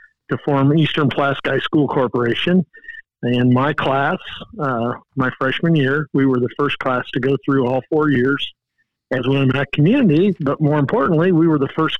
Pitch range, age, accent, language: 135-160 Hz, 50-69, American, English